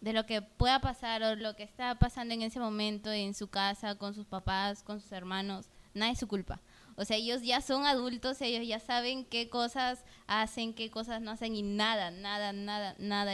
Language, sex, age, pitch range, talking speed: Spanish, female, 20-39, 205-240 Hz, 210 wpm